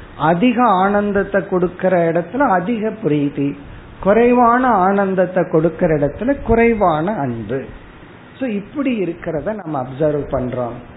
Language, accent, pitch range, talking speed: Tamil, native, 150-200 Hz, 90 wpm